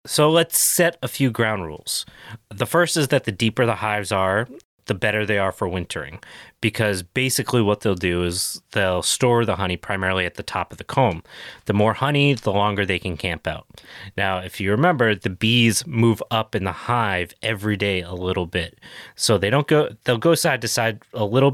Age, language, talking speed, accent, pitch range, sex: 30-49, English, 210 wpm, American, 95-120 Hz, male